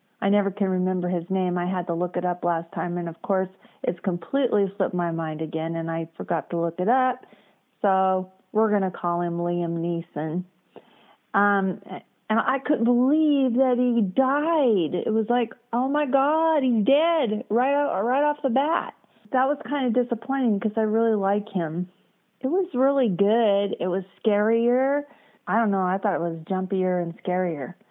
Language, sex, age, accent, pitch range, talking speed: English, female, 40-59, American, 180-230 Hz, 185 wpm